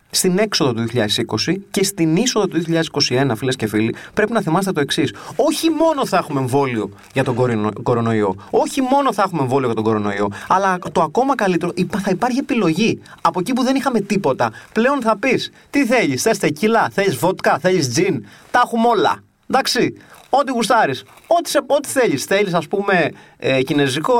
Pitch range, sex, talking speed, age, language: 165-225 Hz, male, 180 wpm, 30-49, Greek